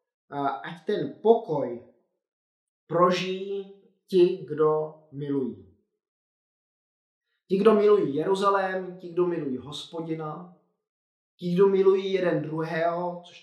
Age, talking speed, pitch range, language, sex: 20-39, 95 wpm, 160-195 Hz, Czech, male